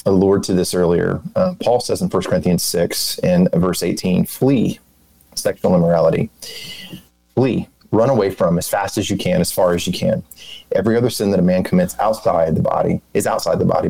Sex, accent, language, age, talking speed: male, American, English, 30-49, 195 wpm